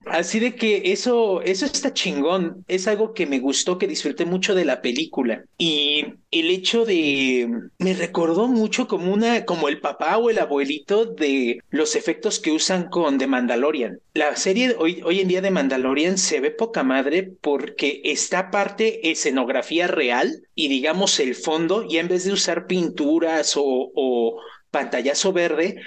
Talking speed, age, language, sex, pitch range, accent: 165 wpm, 40-59, Spanish, male, 145-220 Hz, Mexican